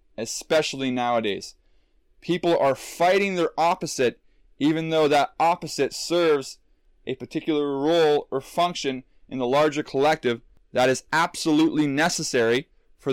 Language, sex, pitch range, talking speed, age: English, male, 130-165 Hz, 120 wpm, 20-39